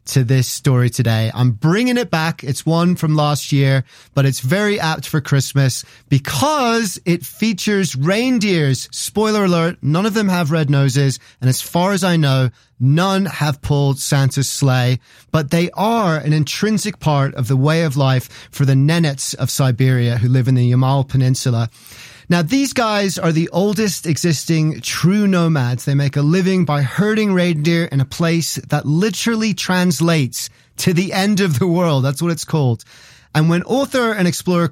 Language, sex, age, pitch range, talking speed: English, male, 30-49, 130-180 Hz, 175 wpm